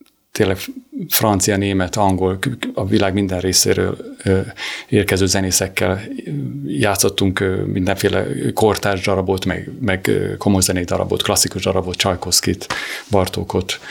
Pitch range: 95-110 Hz